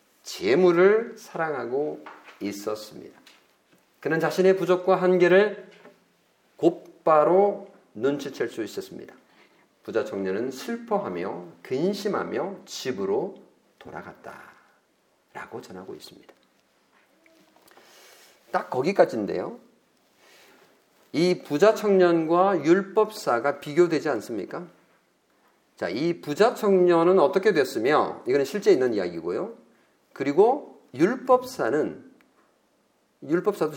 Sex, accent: male, native